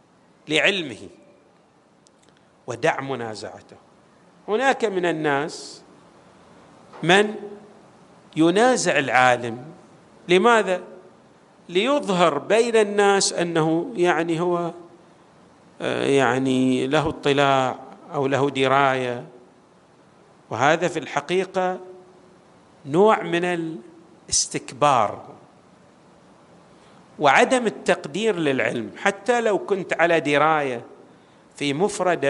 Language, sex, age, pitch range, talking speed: Arabic, male, 50-69, 150-200 Hz, 70 wpm